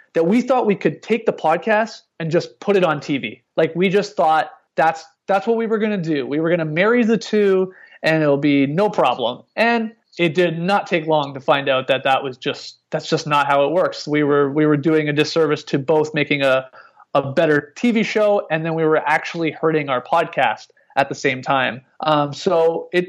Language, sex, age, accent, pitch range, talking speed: English, male, 30-49, American, 145-200 Hz, 230 wpm